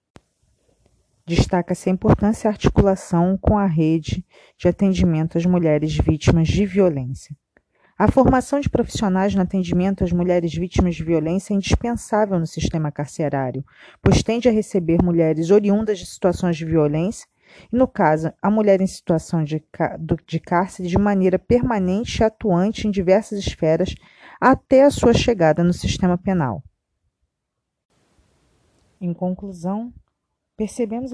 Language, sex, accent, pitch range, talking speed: Portuguese, female, Brazilian, 165-210 Hz, 130 wpm